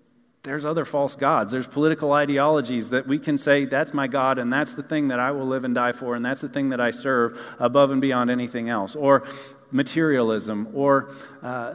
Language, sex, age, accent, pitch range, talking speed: English, male, 40-59, American, 130-155 Hz, 210 wpm